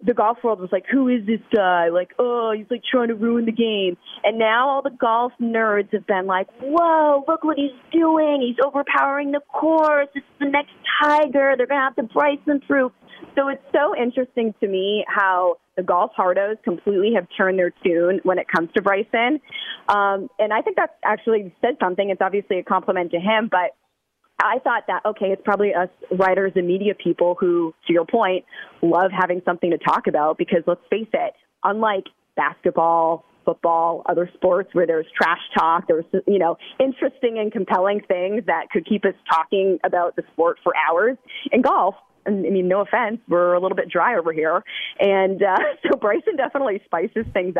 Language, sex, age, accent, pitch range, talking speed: English, female, 30-49, American, 185-250 Hz, 195 wpm